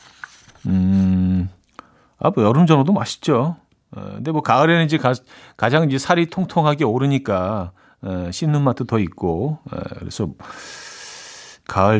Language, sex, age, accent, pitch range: Korean, male, 40-59, native, 105-150 Hz